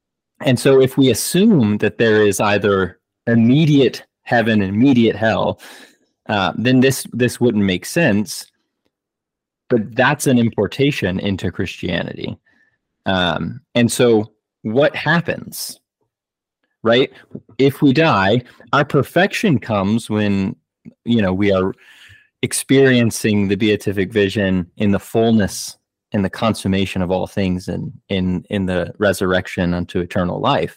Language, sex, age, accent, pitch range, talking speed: English, male, 20-39, American, 95-125 Hz, 130 wpm